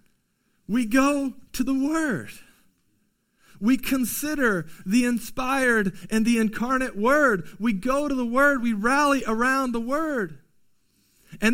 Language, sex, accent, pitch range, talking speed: English, male, American, 205-245 Hz, 125 wpm